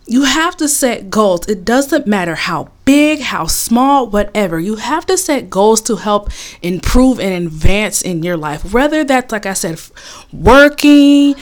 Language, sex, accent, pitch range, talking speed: English, female, American, 180-255 Hz, 170 wpm